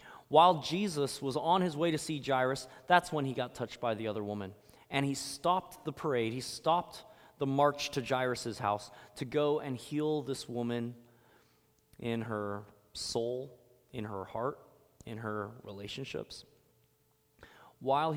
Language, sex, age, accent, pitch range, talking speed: English, male, 20-39, American, 110-140 Hz, 150 wpm